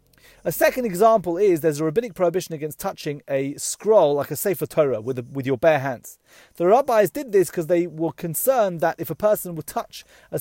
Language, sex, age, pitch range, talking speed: English, male, 30-49, 150-215 Hz, 215 wpm